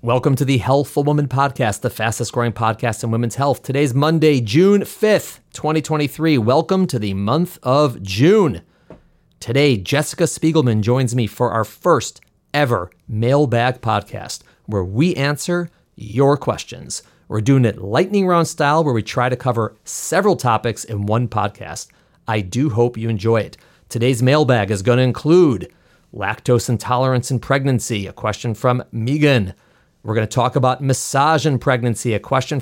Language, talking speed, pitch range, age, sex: English, 160 wpm, 115-145 Hz, 30-49, male